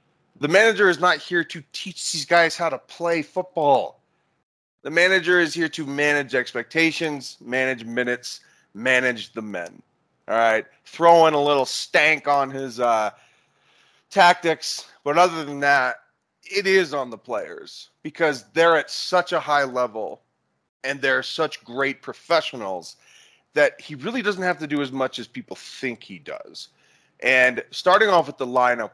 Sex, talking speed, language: male, 160 wpm, English